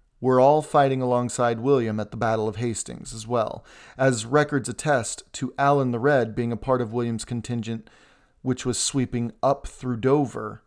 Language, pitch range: English, 110-135 Hz